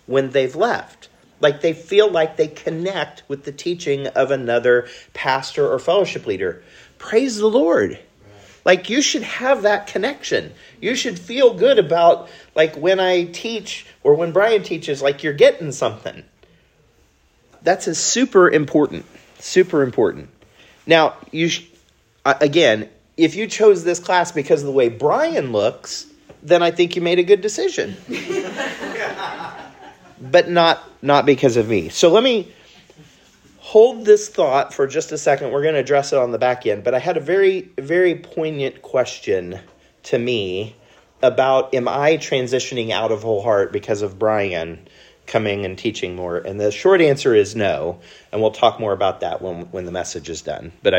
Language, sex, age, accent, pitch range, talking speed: English, male, 40-59, American, 135-215 Hz, 165 wpm